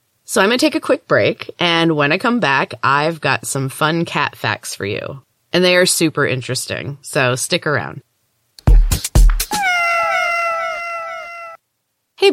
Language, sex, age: English, female, 20-39